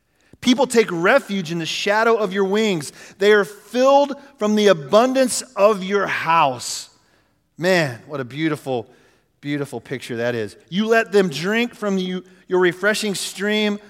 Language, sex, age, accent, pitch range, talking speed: English, male, 40-59, American, 135-210 Hz, 145 wpm